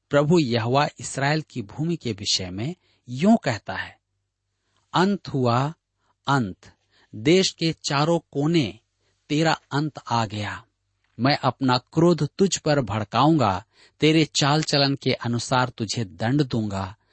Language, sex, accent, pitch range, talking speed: Hindi, male, native, 105-145 Hz, 125 wpm